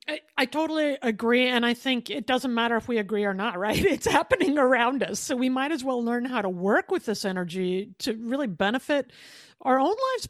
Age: 50-69